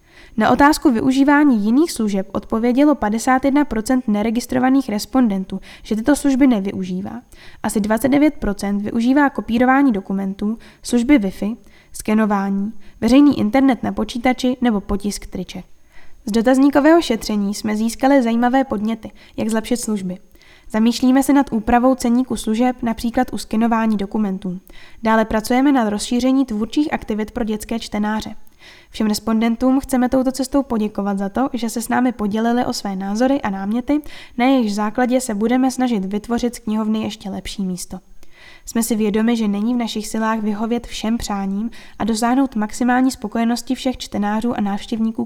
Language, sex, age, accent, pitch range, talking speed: Czech, female, 10-29, native, 210-255 Hz, 140 wpm